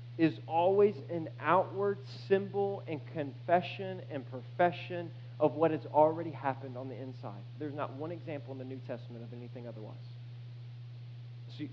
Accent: American